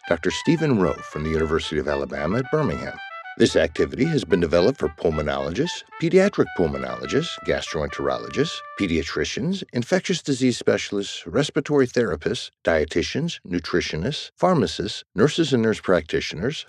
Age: 60-79